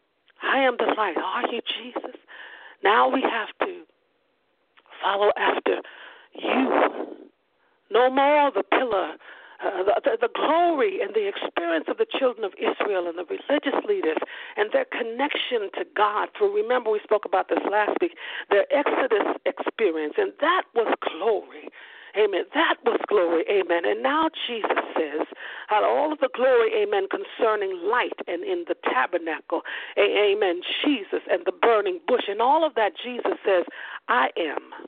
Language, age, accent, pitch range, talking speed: English, 50-69, American, 265-435 Hz, 150 wpm